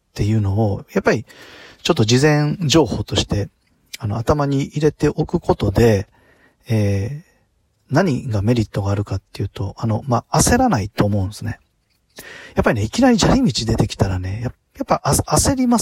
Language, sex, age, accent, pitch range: Japanese, male, 40-59, native, 110-150 Hz